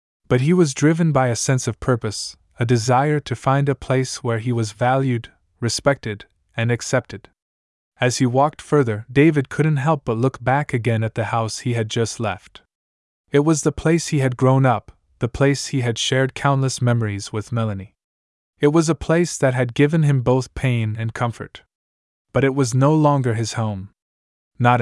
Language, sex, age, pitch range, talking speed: English, male, 20-39, 105-135 Hz, 185 wpm